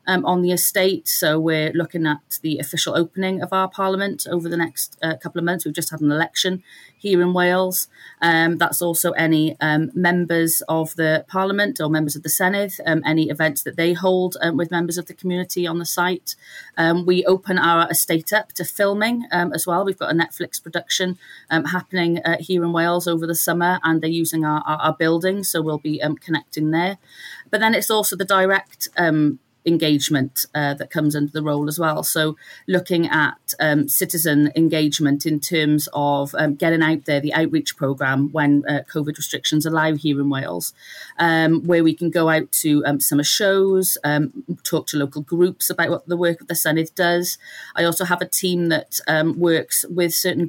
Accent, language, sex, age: British, English, female, 30-49